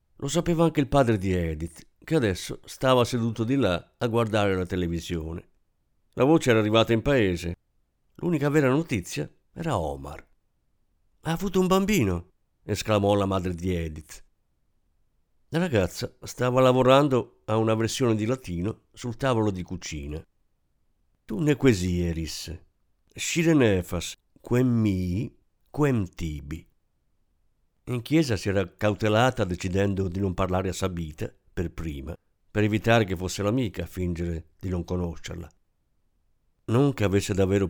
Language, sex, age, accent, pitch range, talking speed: Italian, male, 50-69, native, 90-120 Hz, 135 wpm